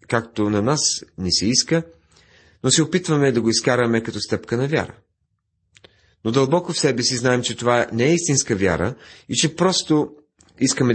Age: 40-59